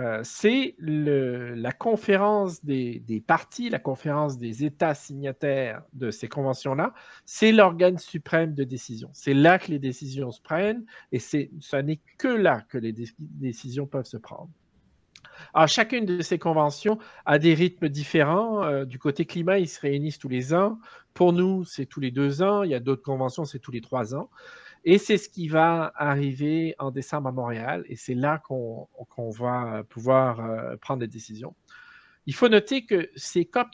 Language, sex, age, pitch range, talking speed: French, male, 50-69, 130-175 Hz, 175 wpm